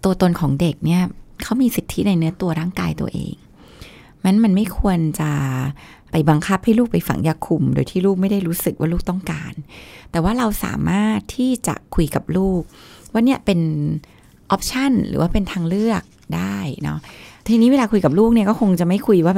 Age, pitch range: 20-39, 160-210 Hz